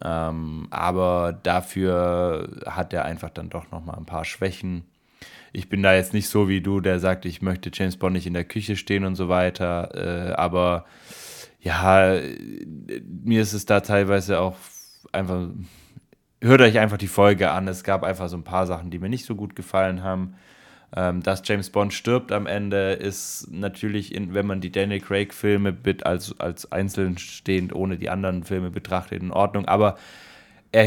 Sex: male